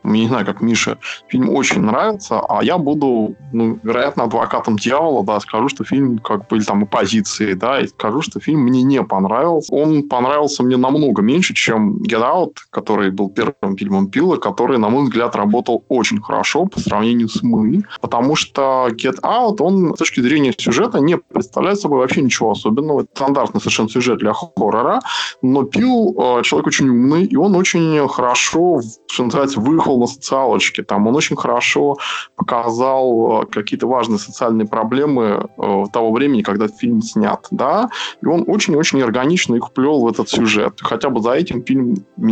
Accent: native